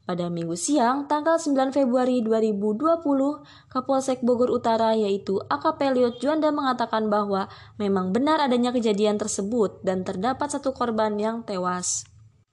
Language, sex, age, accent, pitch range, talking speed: Indonesian, female, 20-39, native, 205-270 Hz, 125 wpm